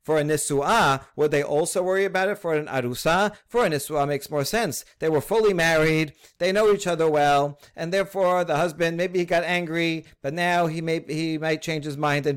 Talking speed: 220 wpm